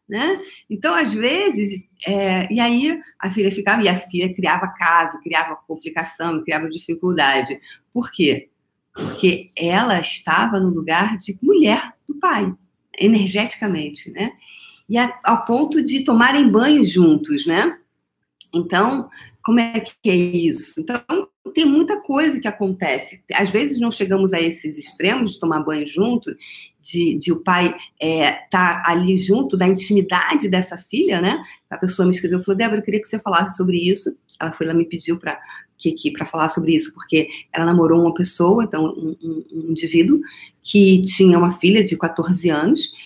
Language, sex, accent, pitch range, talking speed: Portuguese, female, Brazilian, 165-225 Hz, 165 wpm